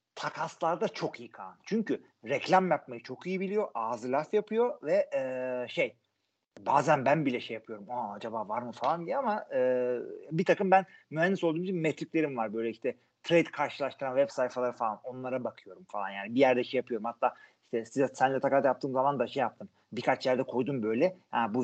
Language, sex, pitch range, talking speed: Turkish, male, 125-195 Hz, 190 wpm